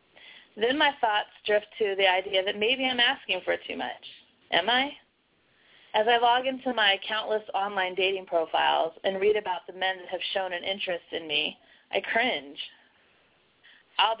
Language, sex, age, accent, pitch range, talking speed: English, female, 30-49, American, 195-240 Hz, 170 wpm